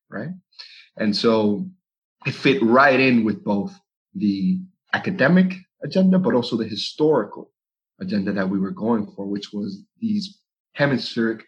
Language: English